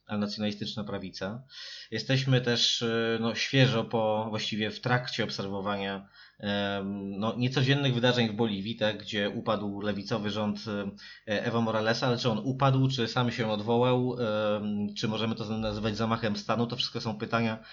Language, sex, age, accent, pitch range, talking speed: Polish, male, 20-39, native, 105-120 Hz, 140 wpm